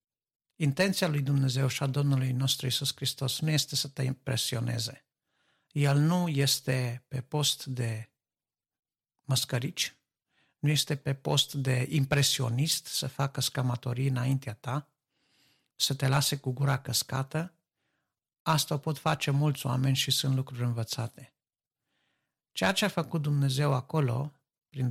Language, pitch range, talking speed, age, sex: Romanian, 130-155 Hz, 130 wpm, 60-79, male